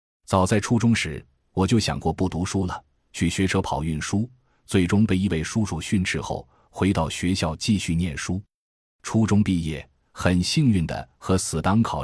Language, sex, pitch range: Chinese, male, 80-110 Hz